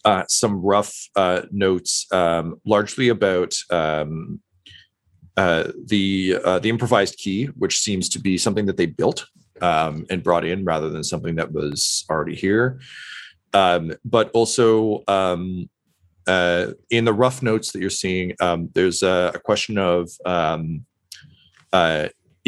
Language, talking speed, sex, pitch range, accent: English, 145 wpm, male, 85-110 Hz, American